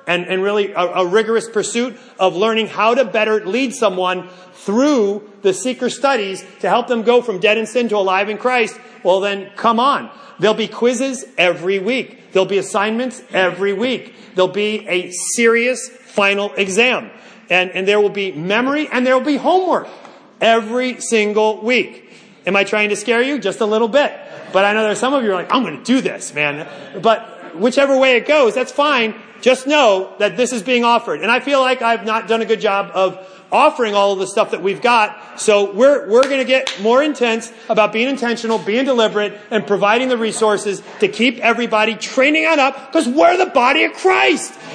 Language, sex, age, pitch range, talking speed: English, male, 30-49, 205-255 Hz, 205 wpm